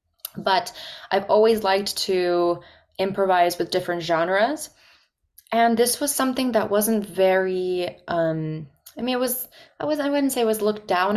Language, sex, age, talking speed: English, female, 20-39, 155 wpm